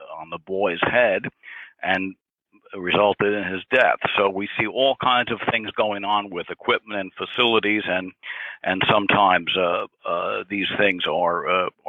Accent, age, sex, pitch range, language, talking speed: American, 60-79, male, 95-115 Hz, English, 155 wpm